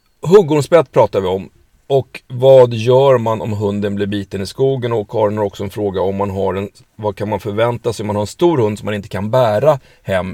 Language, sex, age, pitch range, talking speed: Swedish, male, 30-49, 100-125 Hz, 240 wpm